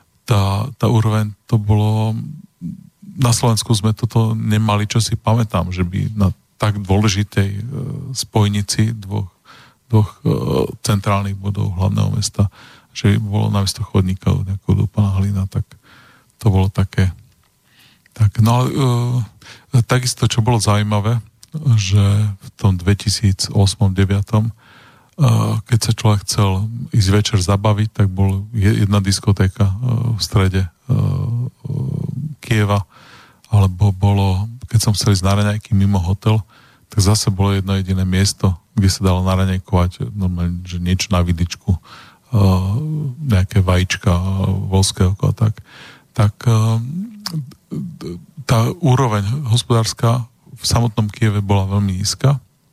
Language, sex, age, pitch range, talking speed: Slovak, male, 40-59, 100-120 Hz, 115 wpm